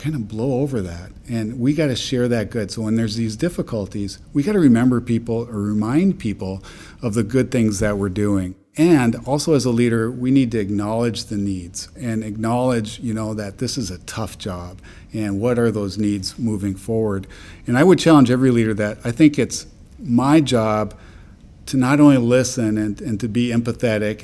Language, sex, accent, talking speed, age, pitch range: English, male, American, 200 wpm, 50-69, 105-125 Hz